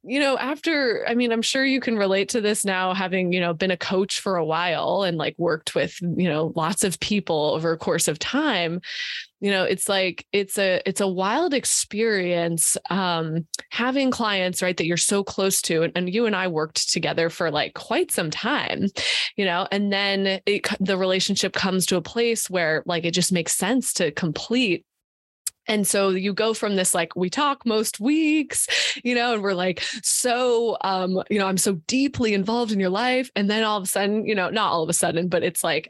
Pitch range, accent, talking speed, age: 185-235 Hz, American, 215 wpm, 20-39